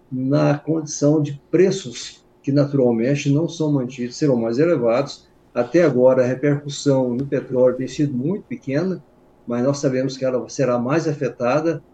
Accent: Brazilian